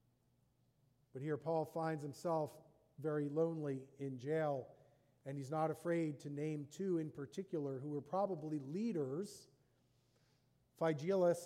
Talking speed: 120 wpm